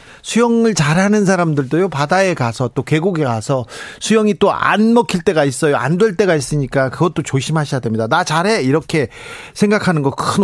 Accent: native